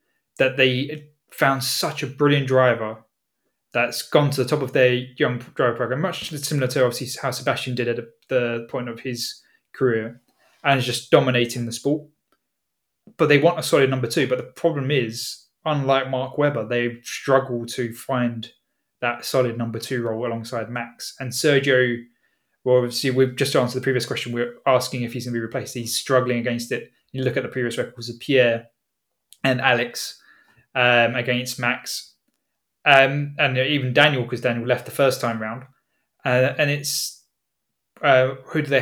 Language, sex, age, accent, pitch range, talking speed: English, male, 20-39, British, 120-140 Hz, 175 wpm